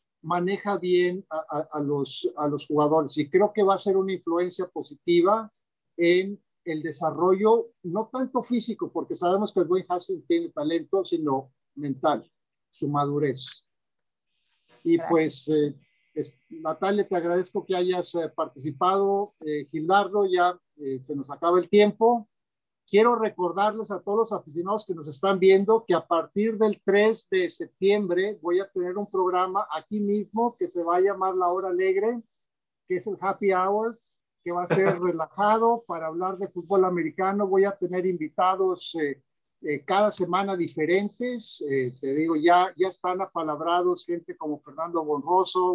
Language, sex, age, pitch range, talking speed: Spanish, male, 50-69, 160-200 Hz, 155 wpm